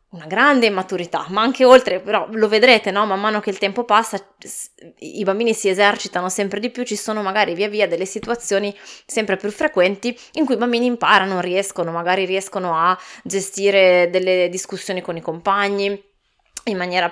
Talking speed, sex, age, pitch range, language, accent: 175 wpm, female, 20-39, 180-220 Hz, Italian, native